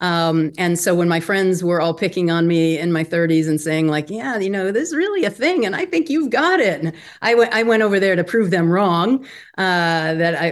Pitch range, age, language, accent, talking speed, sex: 155-190 Hz, 40-59, English, American, 250 wpm, female